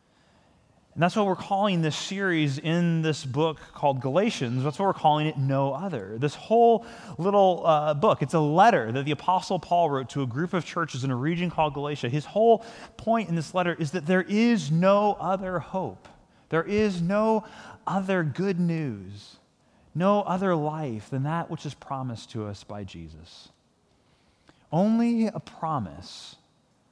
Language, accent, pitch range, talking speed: English, American, 120-185 Hz, 170 wpm